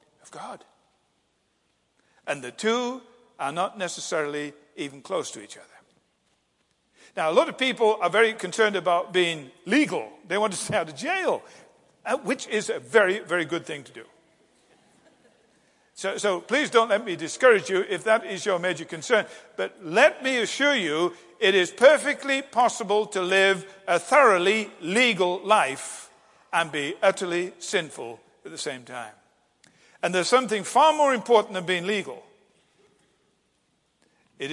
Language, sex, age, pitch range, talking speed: English, male, 50-69, 175-240 Hz, 150 wpm